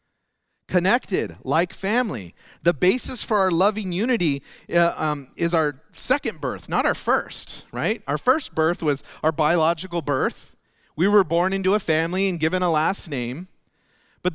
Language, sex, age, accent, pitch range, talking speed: English, male, 40-59, American, 155-215 Hz, 160 wpm